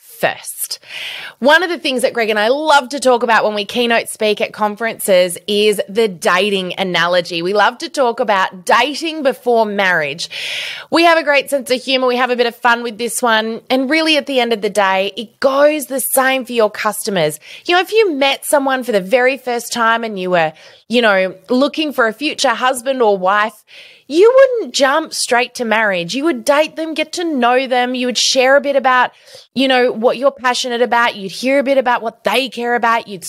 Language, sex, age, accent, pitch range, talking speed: English, female, 20-39, New Zealand, 210-290 Hz, 220 wpm